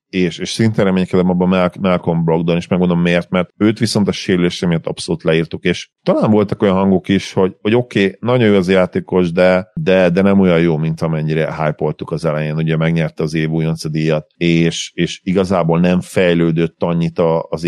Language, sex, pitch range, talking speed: Hungarian, male, 80-95 Hz, 190 wpm